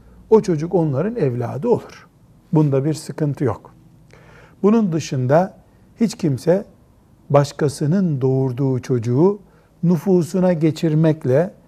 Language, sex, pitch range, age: Turkish, male, 130-175 Hz, 60-79